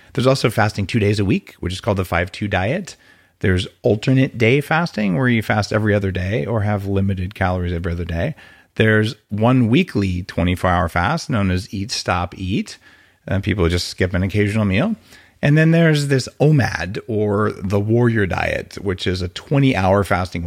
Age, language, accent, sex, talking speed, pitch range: 40-59, English, American, male, 180 wpm, 95-130 Hz